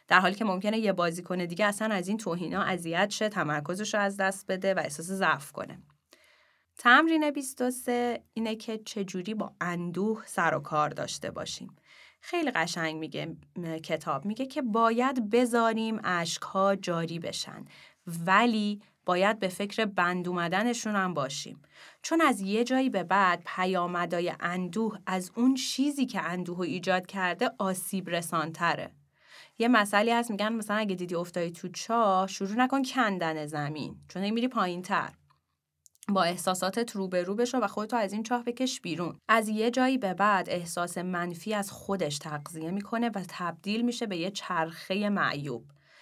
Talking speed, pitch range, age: 155 wpm, 175-230 Hz, 30-49